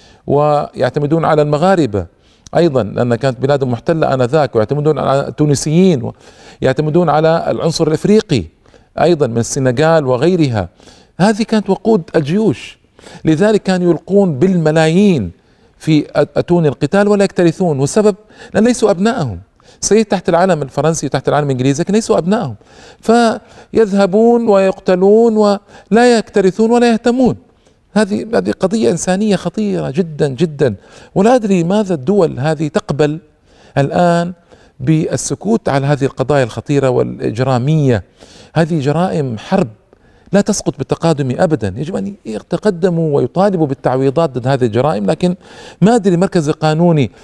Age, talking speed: 50-69, 115 wpm